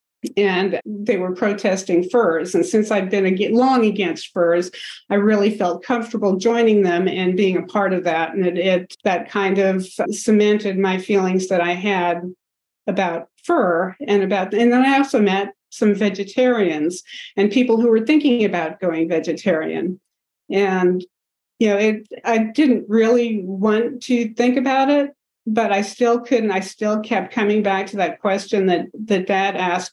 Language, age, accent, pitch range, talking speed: English, 50-69, American, 185-230 Hz, 165 wpm